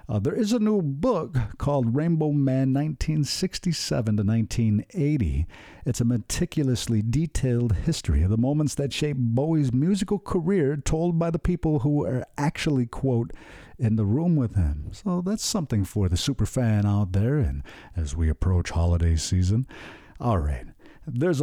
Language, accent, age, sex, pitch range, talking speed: English, American, 50-69, male, 105-160 Hz, 155 wpm